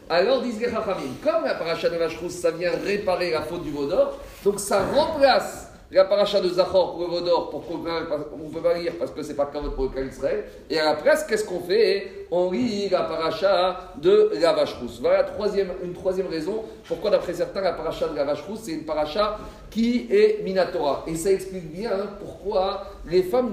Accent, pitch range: French, 170-230 Hz